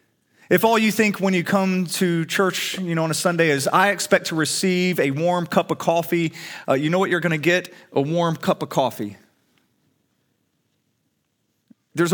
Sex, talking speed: male, 185 wpm